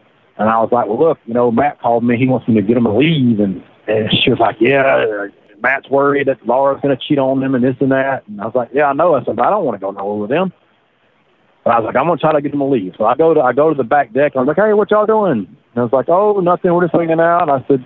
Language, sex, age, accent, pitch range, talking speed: English, male, 40-59, American, 120-150 Hz, 325 wpm